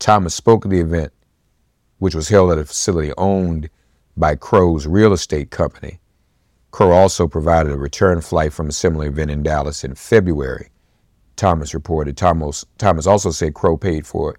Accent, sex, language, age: American, male, English, 50-69